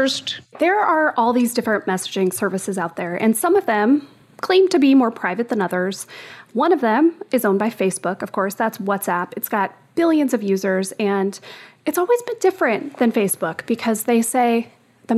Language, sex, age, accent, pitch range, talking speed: English, female, 30-49, American, 205-275 Hz, 185 wpm